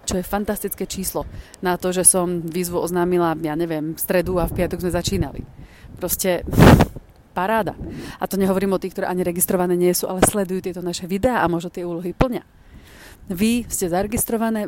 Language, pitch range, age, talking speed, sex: Slovak, 175-200 Hz, 30-49, 180 wpm, female